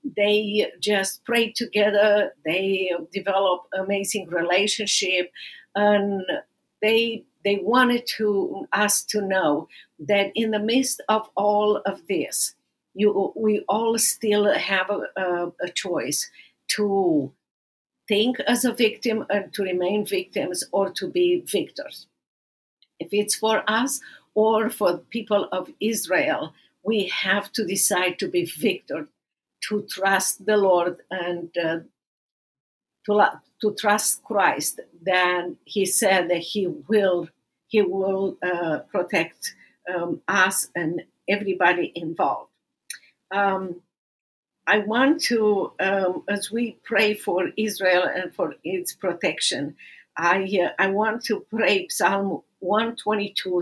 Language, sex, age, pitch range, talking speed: English, female, 50-69, 190-220 Hz, 125 wpm